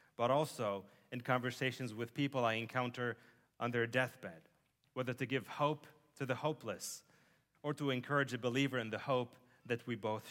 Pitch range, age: 115-140 Hz, 30-49